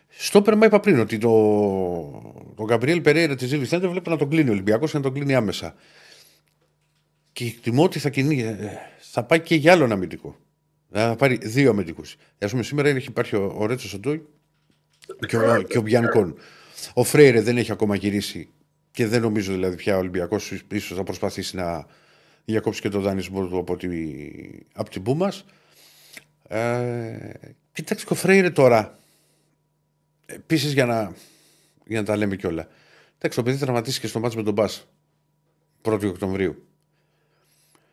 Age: 50-69